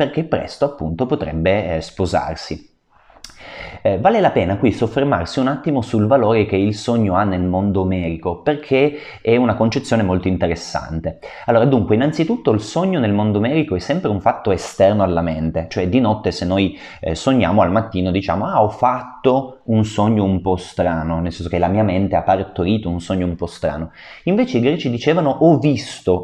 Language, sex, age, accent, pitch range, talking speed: Italian, male, 30-49, native, 90-120 Hz, 185 wpm